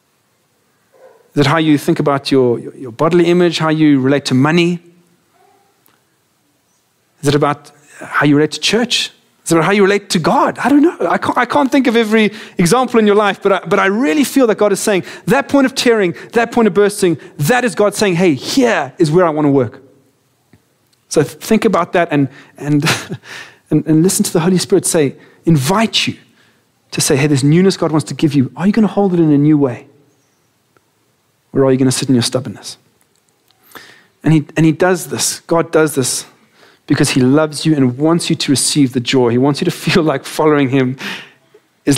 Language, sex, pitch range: English, male, 140-195 Hz